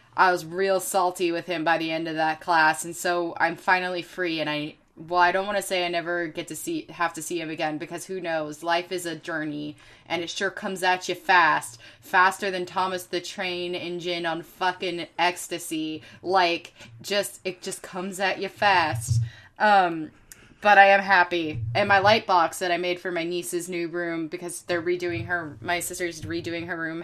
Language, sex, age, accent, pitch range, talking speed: English, female, 20-39, American, 170-200 Hz, 205 wpm